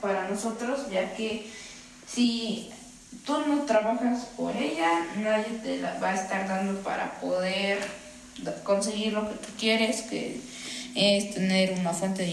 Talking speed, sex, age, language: 145 wpm, female, 20-39, English